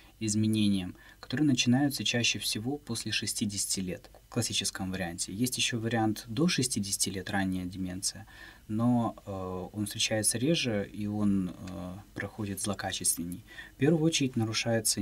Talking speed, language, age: 130 wpm, Russian, 20-39